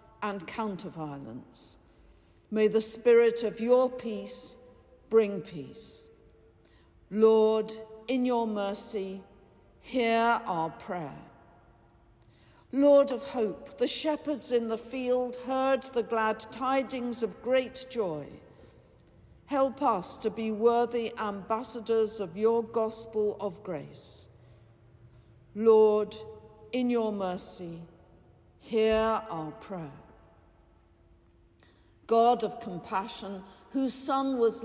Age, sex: 50-69, female